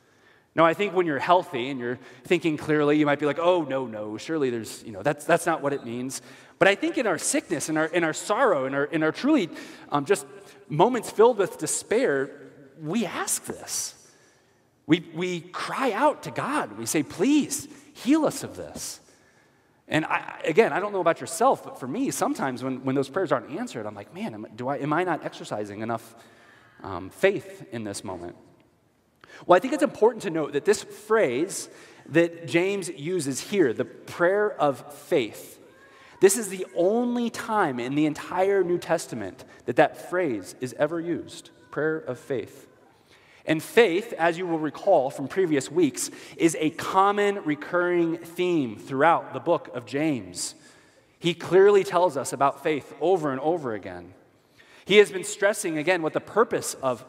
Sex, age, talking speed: male, 30-49, 185 wpm